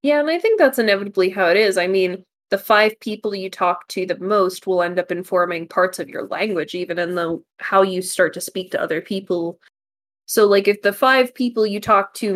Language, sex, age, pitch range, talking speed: English, female, 20-39, 175-205 Hz, 230 wpm